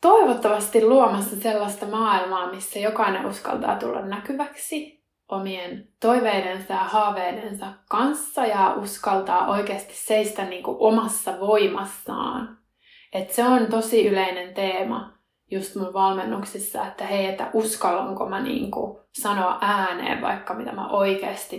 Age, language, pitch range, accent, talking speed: 20-39, Finnish, 195-235 Hz, native, 115 wpm